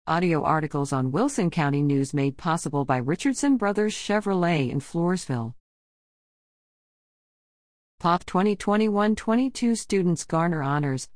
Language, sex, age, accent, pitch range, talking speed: English, female, 50-69, American, 145-195 Hz, 110 wpm